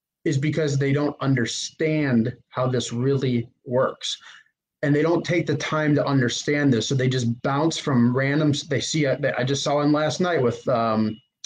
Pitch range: 125-160 Hz